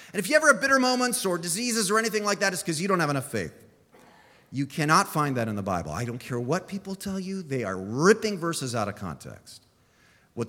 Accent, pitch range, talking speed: American, 125-190 Hz, 240 wpm